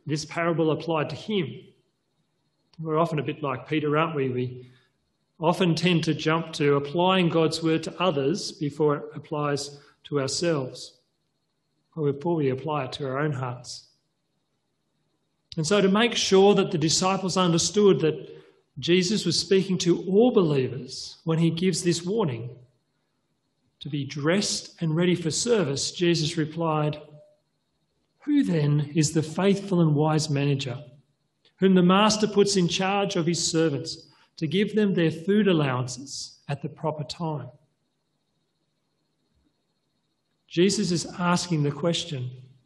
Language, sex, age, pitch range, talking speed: English, male, 40-59, 145-180 Hz, 140 wpm